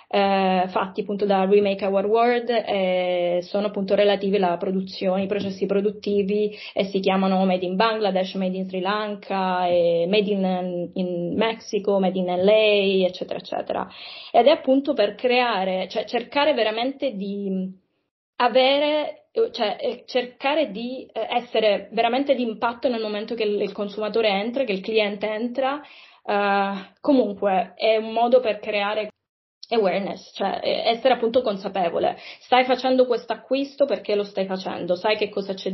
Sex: female